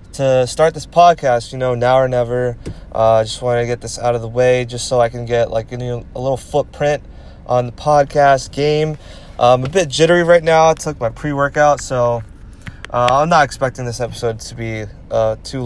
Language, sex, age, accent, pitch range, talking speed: English, male, 20-39, American, 120-150 Hz, 220 wpm